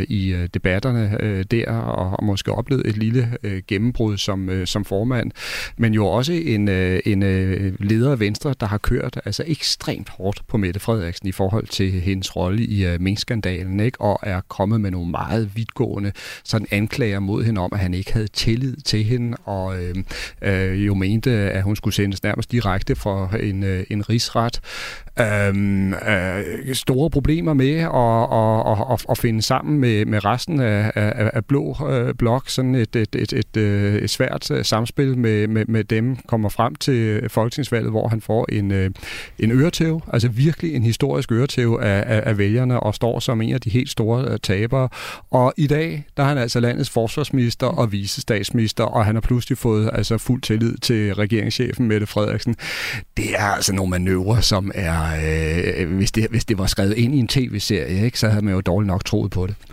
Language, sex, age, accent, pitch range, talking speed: Danish, male, 40-59, native, 100-120 Hz, 190 wpm